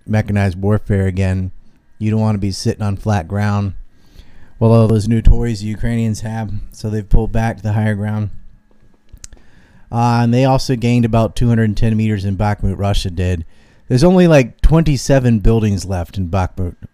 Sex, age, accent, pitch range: male, 30-49, American, 100-125 Hz